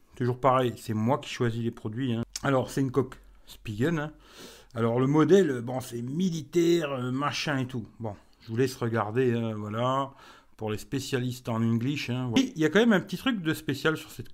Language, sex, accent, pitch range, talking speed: French, male, French, 125-145 Hz, 210 wpm